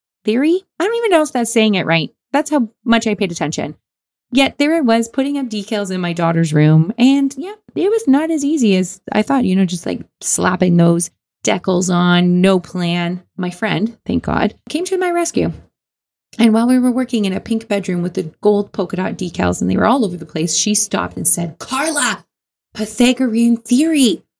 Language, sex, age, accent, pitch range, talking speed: English, female, 20-39, American, 175-255 Hz, 205 wpm